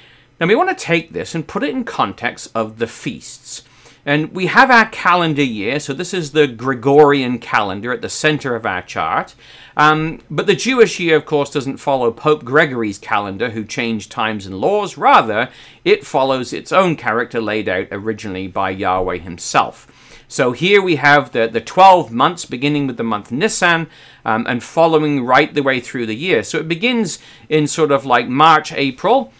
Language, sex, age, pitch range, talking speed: English, male, 40-59, 120-165 Hz, 190 wpm